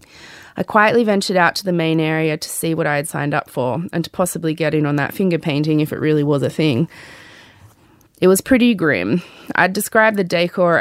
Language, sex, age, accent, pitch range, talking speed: English, female, 20-39, Australian, 155-185 Hz, 215 wpm